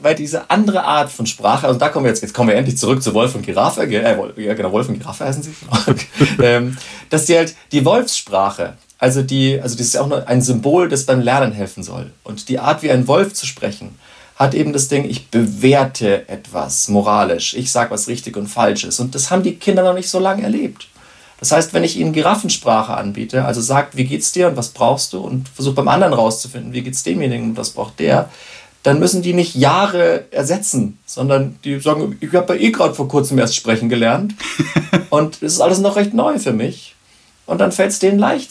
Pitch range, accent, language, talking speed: 120-170 Hz, German, German, 225 wpm